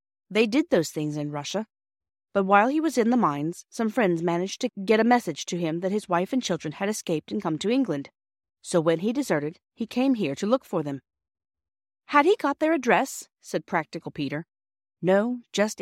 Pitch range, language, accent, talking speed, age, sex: 150-230 Hz, English, American, 205 wpm, 40-59, female